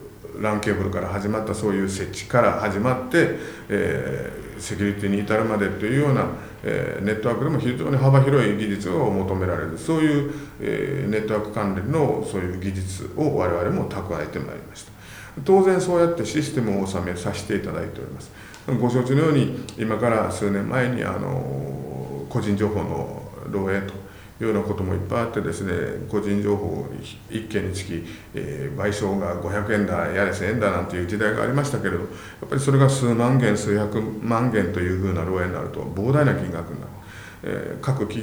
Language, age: Japanese, 50-69